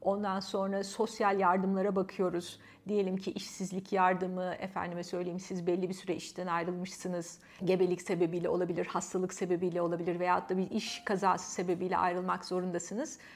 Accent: native